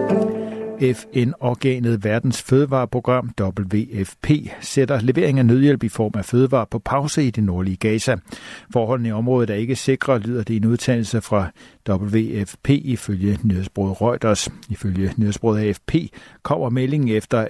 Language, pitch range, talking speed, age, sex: Danish, 105-130 Hz, 135 wpm, 60-79, male